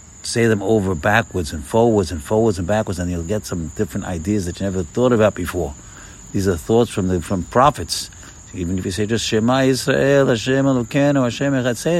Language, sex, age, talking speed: English, male, 60-79, 195 wpm